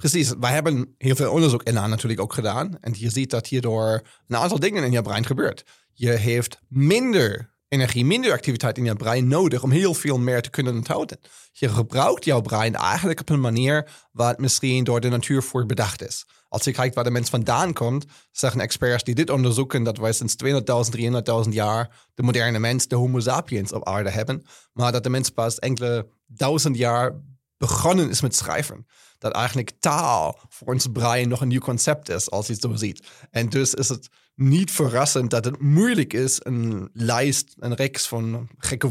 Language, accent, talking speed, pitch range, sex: Dutch, German, 195 wpm, 115-140 Hz, male